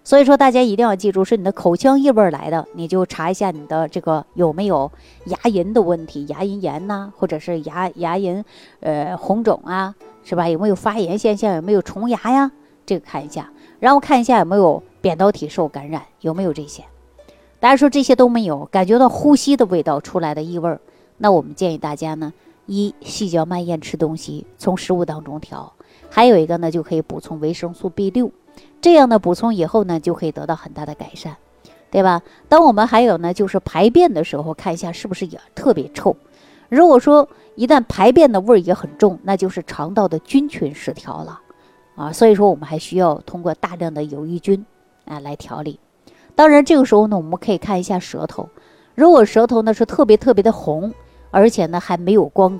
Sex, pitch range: female, 165-220 Hz